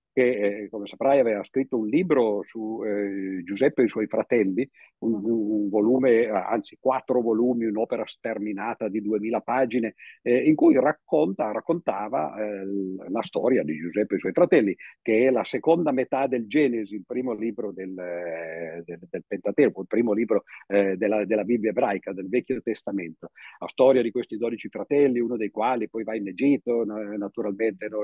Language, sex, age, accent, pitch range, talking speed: Italian, male, 50-69, native, 105-130 Hz, 170 wpm